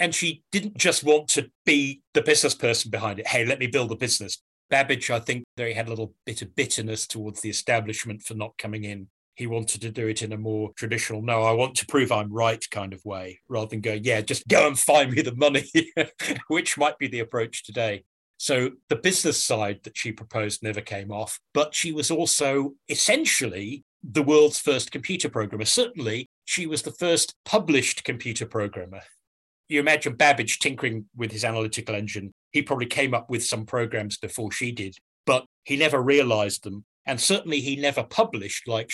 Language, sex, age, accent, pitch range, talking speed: English, male, 30-49, British, 110-145 Hz, 200 wpm